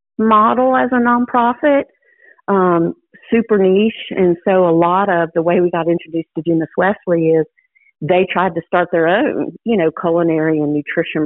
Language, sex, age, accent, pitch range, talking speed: English, female, 50-69, American, 155-185 Hz, 170 wpm